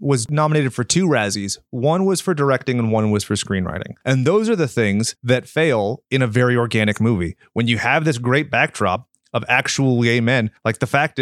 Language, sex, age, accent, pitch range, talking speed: English, male, 30-49, American, 110-140 Hz, 210 wpm